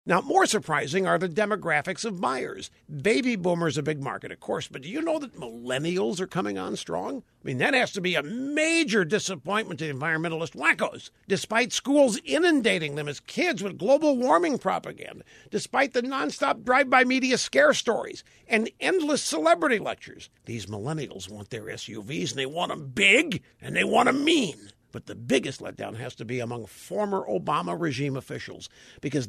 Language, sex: English, male